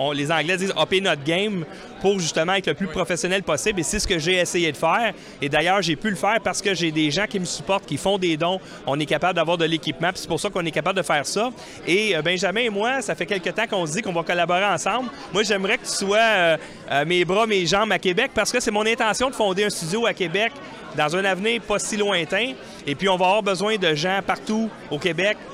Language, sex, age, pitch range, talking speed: French, male, 30-49, 165-210 Hz, 270 wpm